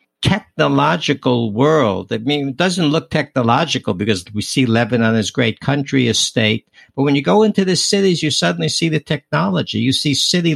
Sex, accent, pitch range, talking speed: male, American, 115-165 Hz, 180 wpm